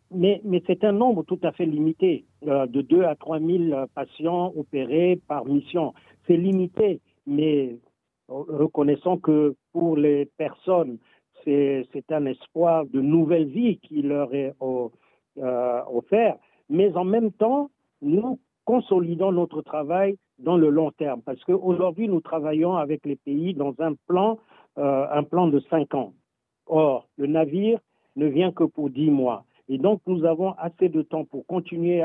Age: 60-79